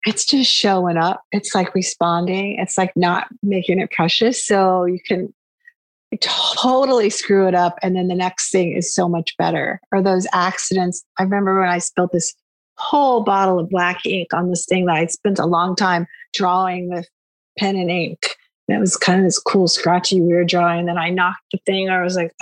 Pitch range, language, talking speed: 175-230 Hz, English, 205 wpm